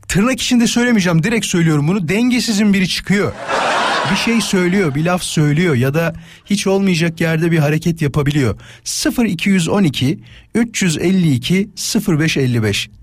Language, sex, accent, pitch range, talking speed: Turkish, male, native, 155-200 Hz, 120 wpm